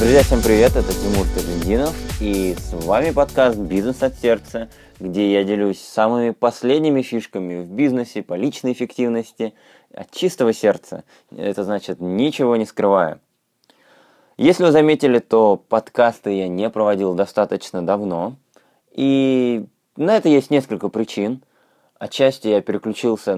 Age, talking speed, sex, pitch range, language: 20-39, 130 wpm, male, 100-130 Hz, Russian